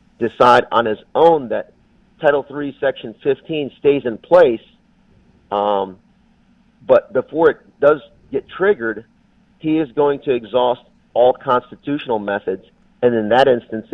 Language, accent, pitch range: English, American, 110-135 Hz